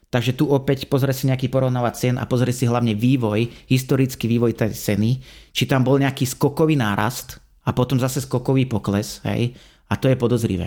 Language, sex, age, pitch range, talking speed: Slovak, male, 30-49, 115-135 Hz, 185 wpm